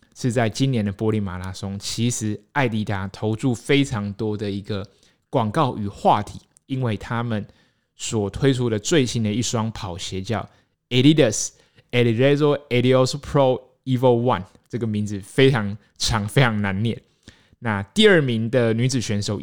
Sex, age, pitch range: male, 20-39, 105-130 Hz